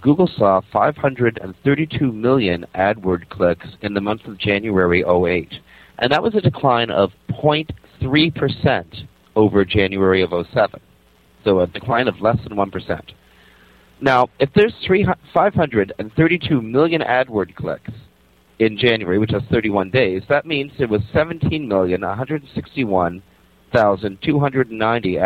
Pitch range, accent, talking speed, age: 90-130 Hz, American, 115 wpm, 40-59